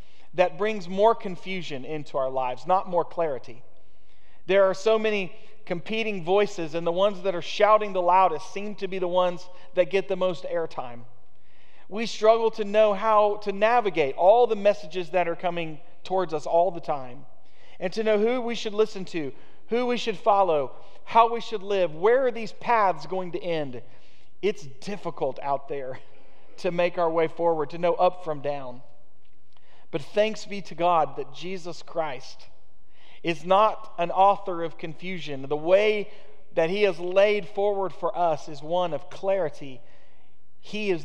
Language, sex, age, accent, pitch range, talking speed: English, male, 40-59, American, 155-200 Hz, 170 wpm